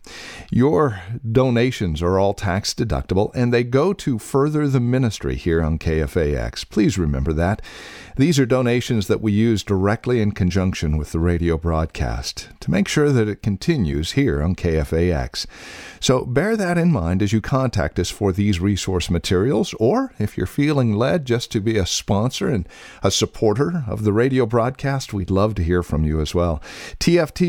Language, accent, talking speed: English, American, 175 wpm